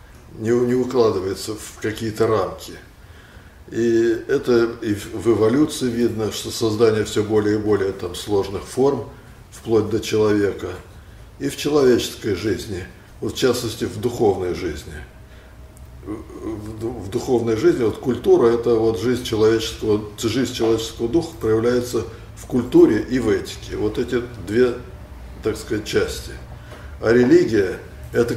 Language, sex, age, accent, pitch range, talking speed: Russian, male, 60-79, native, 105-125 Hz, 130 wpm